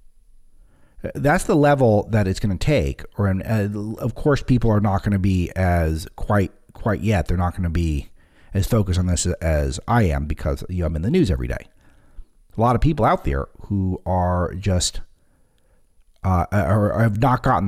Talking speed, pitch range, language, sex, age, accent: 185 wpm, 90-120 Hz, English, male, 40-59, American